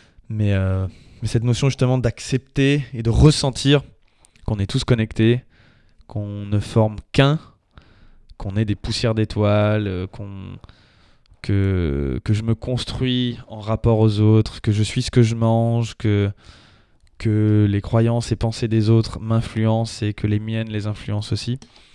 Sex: male